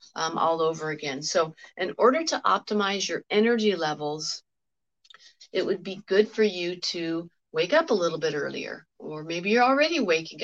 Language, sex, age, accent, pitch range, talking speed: English, female, 40-59, American, 165-205 Hz, 170 wpm